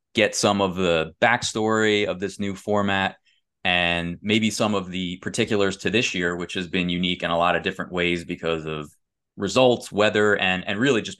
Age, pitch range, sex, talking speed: 20-39, 90-110 Hz, male, 195 wpm